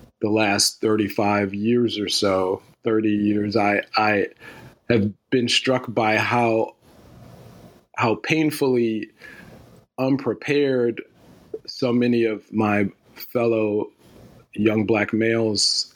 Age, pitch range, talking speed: 40-59, 100-115 Hz, 100 wpm